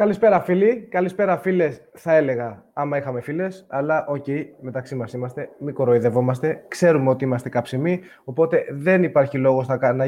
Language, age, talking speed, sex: Greek, 20-39, 155 wpm, male